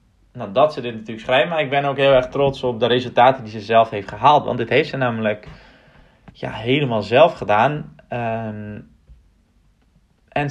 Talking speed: 165 wpm